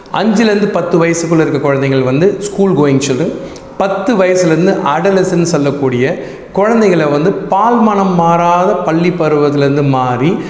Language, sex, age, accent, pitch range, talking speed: Tamil, male, 40-59, native, 140-185 Hz, 115 wpm